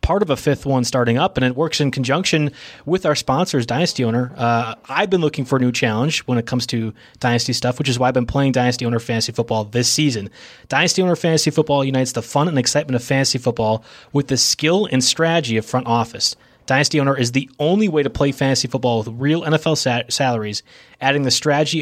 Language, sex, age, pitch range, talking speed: English, male, 30-49, 120-145 Hz, 220 wpm